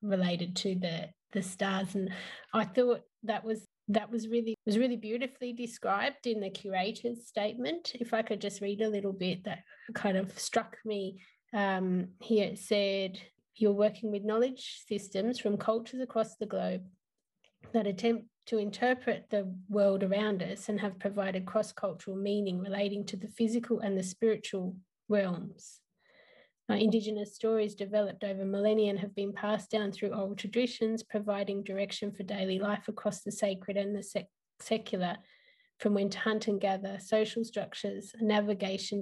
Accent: Australian